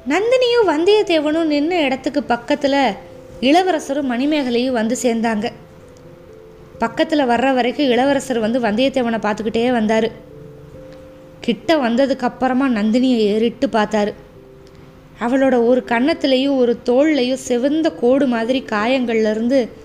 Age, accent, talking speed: 20-39, native, 95 wpm